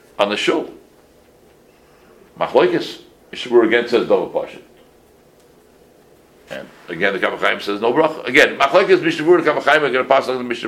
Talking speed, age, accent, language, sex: 150 wpm, 60-79, American, English, male